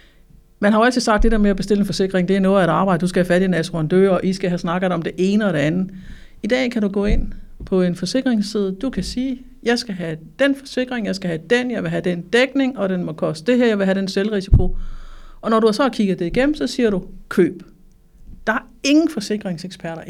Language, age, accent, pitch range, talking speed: Danish, 60-79, native, 185-235 Hz, 260 wpm